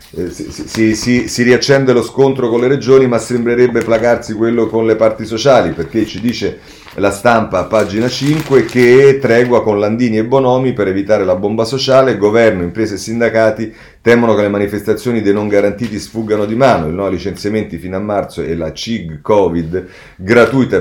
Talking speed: 180 wpm